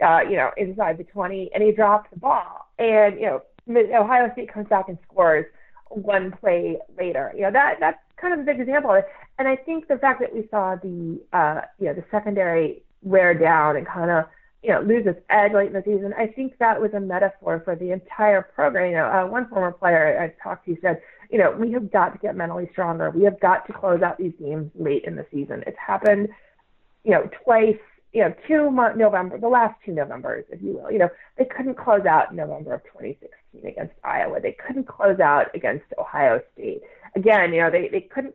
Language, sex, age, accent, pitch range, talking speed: English, female, 30-49, American, 180-245 Hz, 225 wpm